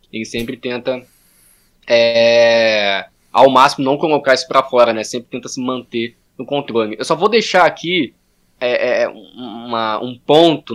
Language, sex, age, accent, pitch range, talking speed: Portuguese, male, 20-39, Brazilian, 115-150 Hz, 135 wpm